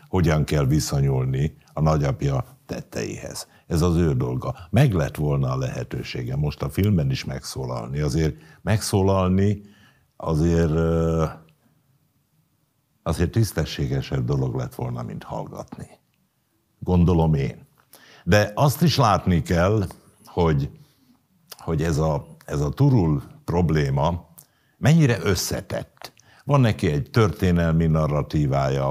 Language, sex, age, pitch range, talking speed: Hungarian, male, 60-79, 75-125 Hz, 110 wpm